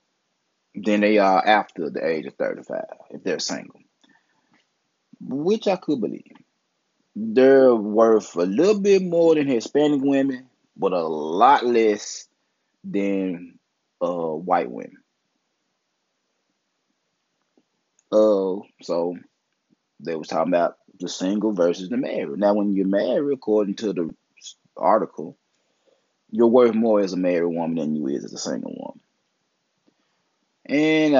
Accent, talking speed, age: American, 130 wpm, 20-39